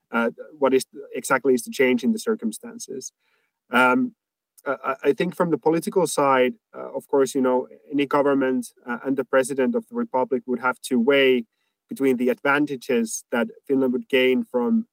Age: 30-49